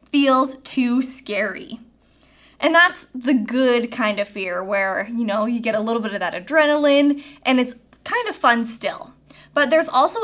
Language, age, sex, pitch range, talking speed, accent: English, 10-29, female, 215-265 Hz, 175 wpm, American